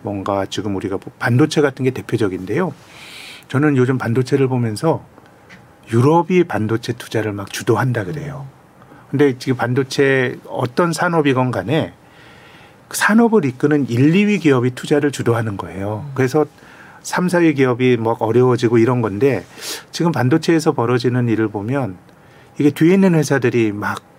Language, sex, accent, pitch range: Korean, male, native, 110-150 Hz